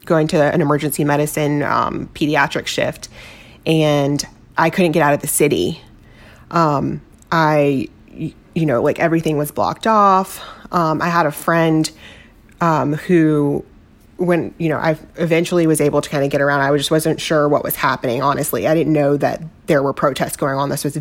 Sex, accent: female, American